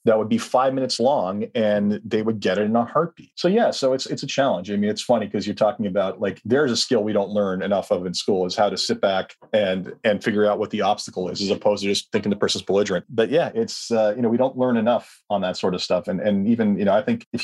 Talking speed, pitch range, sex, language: 290 wpm, 100-150 Hz, male, English